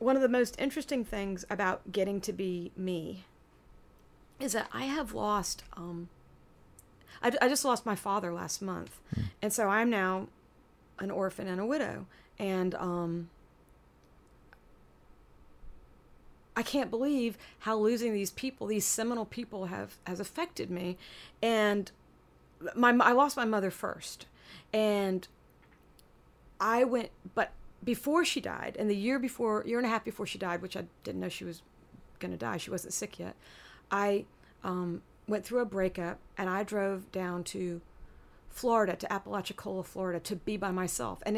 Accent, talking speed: American, 155 wpm